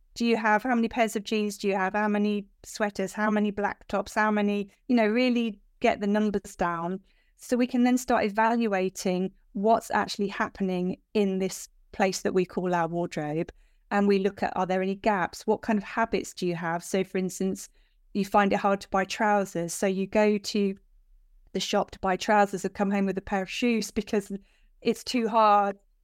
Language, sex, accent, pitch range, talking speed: English, female, British, 195-230 Hz, 205 wpm